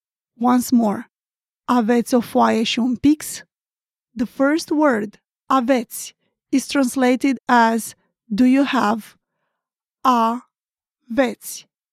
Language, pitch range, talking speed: English, 230-270 Hz, 85 wpm